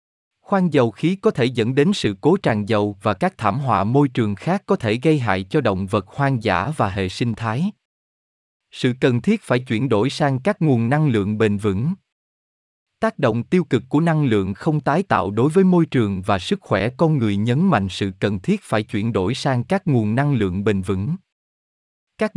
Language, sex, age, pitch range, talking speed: Vietnamese, male, 20-39, 105-155 Hz, 210 wpm